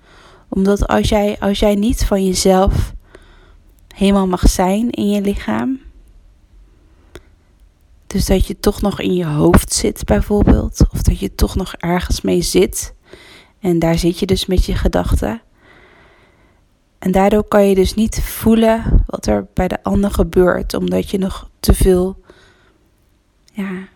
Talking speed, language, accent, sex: 150 wpm, Dutch, Dutch, female